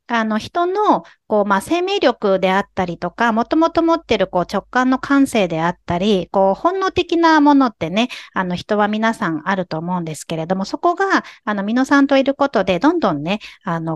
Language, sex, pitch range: Japanese, female, 180-275 Hz